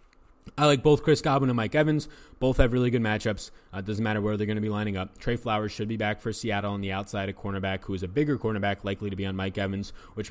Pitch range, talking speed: 100-115 Hz, 275 wpm